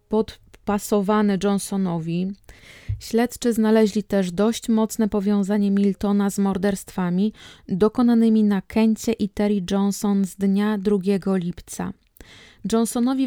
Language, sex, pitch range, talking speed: Polish, female, 195-220 Hz, 100 wpm